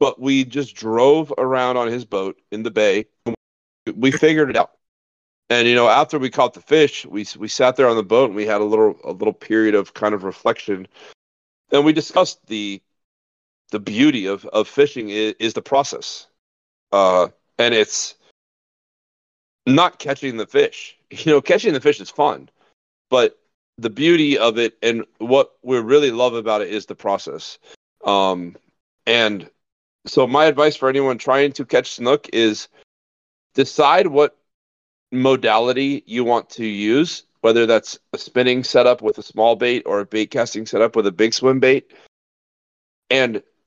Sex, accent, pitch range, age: male, American, 105-150 Hz, 40-59